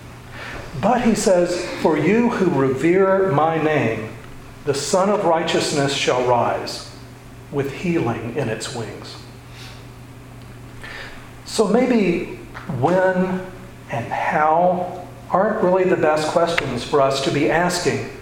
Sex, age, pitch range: male, 50-69, 125-170 Hz